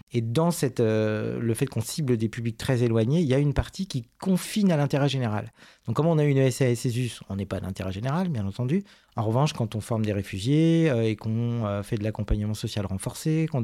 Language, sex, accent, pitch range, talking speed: French, male, French, 110-140 Hz, 225 wpm